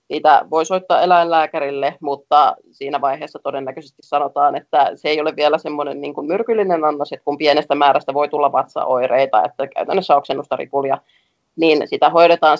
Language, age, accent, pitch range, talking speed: Finnish, 30-49, native, 140-170 Hz, 155 wpm